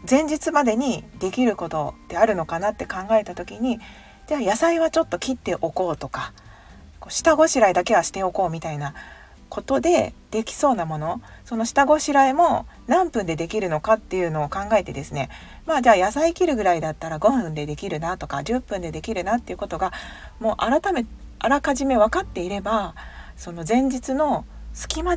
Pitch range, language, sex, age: 165-260 Hz, Japanese, female, 40-59